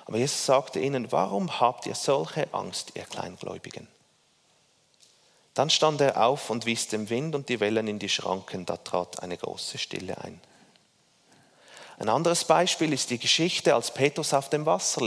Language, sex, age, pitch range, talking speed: German, male, 30-49, 110-155 Hz, 165 wpm